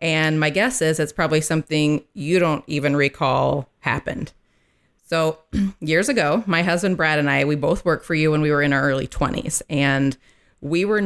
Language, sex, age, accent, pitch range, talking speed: English, female, 30-49, American, 145-170 Hz, 190 wpm